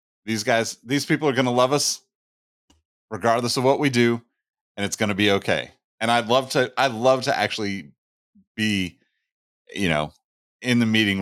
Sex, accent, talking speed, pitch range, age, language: male, American, 180 wpm, 85-115 Hz, 30-49, English